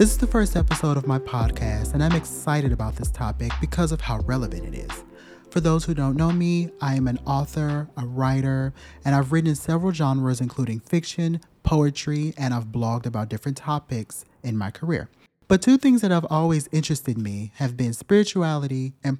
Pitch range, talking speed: 115-155 Hz, 195 wpm